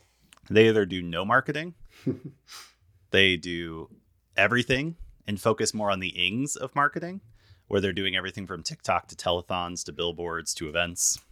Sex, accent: male, American